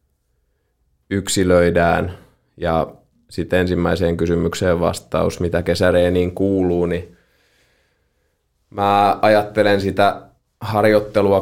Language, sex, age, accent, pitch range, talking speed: Finnish, male, 20-39, native, 85-95 Hz, 75 wpm